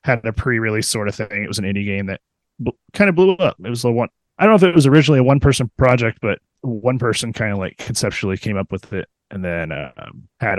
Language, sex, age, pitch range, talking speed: English, male, 30-49, 90-130 Hz, 255 wpm